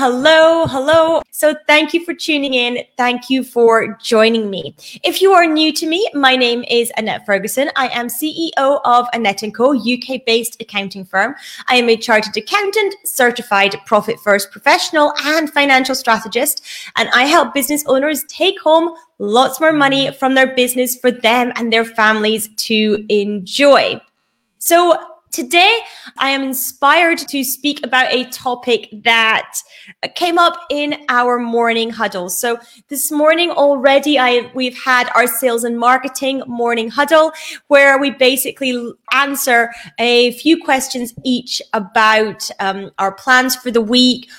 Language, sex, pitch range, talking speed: English, female, 225-290 Hz, 150 wpm